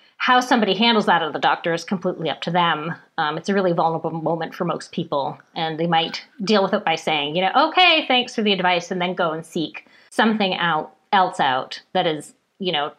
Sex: female